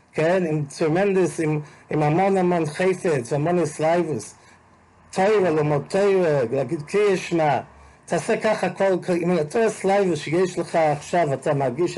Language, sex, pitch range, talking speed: English, male, 130-180 Hz, 110 wpm